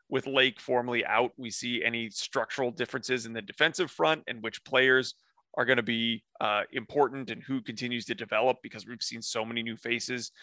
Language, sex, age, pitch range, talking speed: English, male, 30-49, 115-135 Hz, 195 wpm